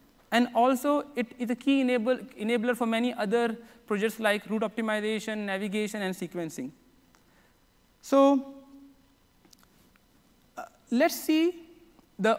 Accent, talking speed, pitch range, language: Indian, 105 wpm, 215-260 Hz, English